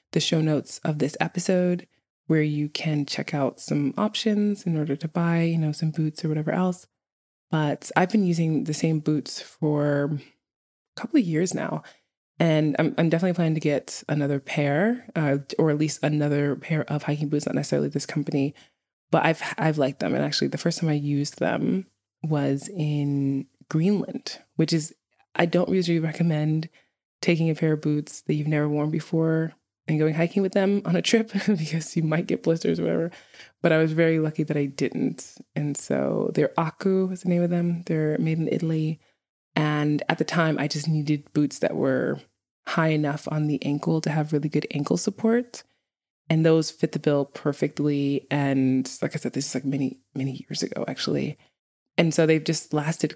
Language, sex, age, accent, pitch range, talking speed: English, female, 20-39, American, 145-165 Hz, 195 wpm